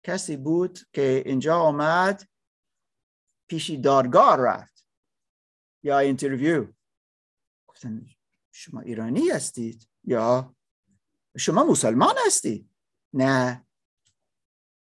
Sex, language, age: male, Persian, 50-69